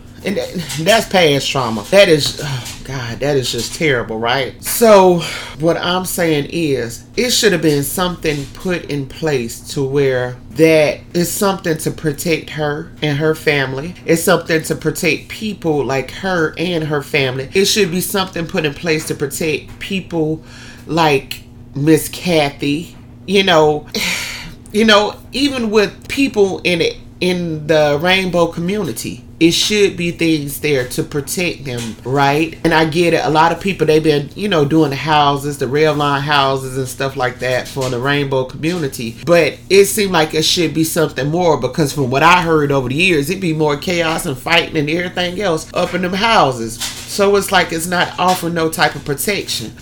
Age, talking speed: 30-49, 180 wpm